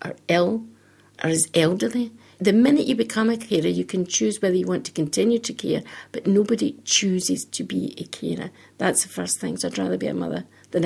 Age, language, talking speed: 60-79, English, 215 wpm